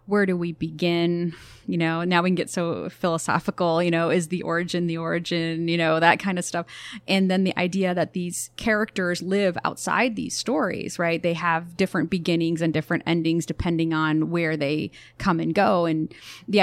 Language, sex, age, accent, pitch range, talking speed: English, female, 30-49, American, 165-185 Hz, 190 wpm